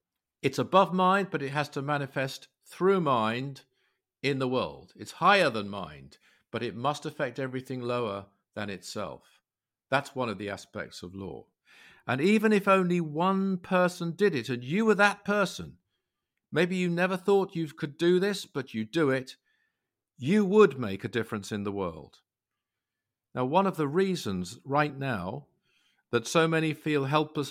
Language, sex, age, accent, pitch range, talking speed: English, male, 50-69, British, 125-170 Hz, 170 wpm